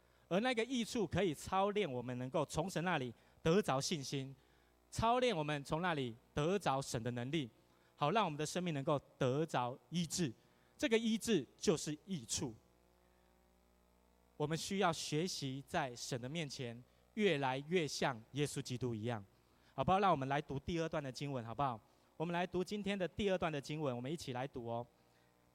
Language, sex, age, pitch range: Chinese, male, 20-39, 115-165 Hz